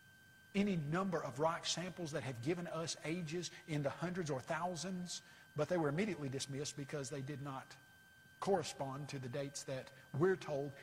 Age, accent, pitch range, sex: 50-69, American, 140-165 Hz, male